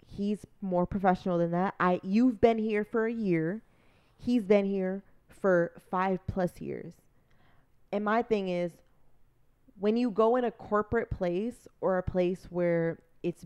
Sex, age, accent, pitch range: female, 20-39, American, 175-225 Hz